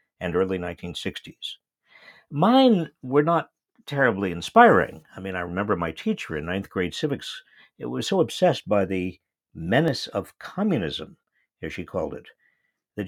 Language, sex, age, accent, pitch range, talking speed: English, male, 50-69, American, 100-150 Hz, 140 wpm